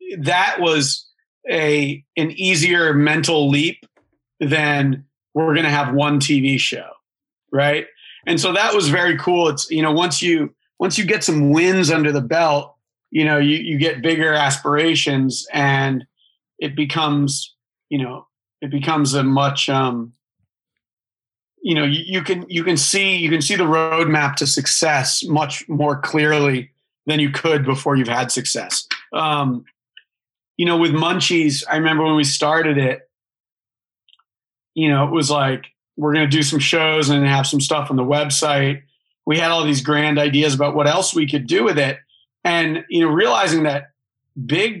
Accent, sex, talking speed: American, male, 170 wpm